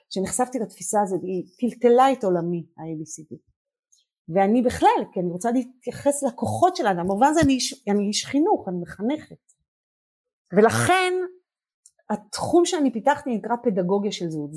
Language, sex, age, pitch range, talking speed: Hebrew, female, 40-59, 180-265 Hz, 145 wpm